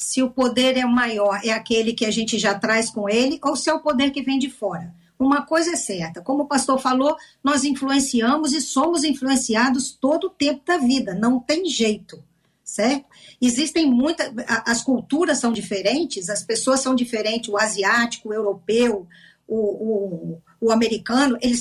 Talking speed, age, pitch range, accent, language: 180 wpm, 50-69, 225-285 Hz, Brazilian, Portuguese